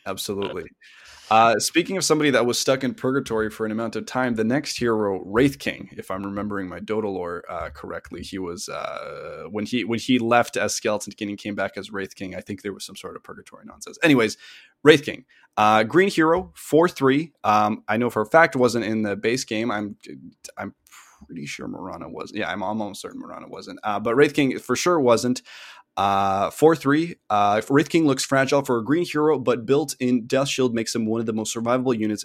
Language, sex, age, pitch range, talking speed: English, male, 20-39, 105-135 Hz, 220 wpm